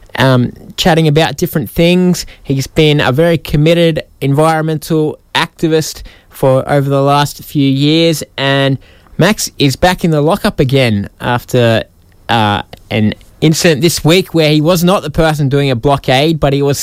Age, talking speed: 20-39, 155 wpm